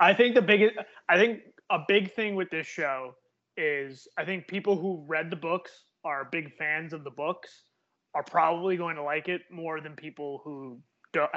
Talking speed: 195 wpm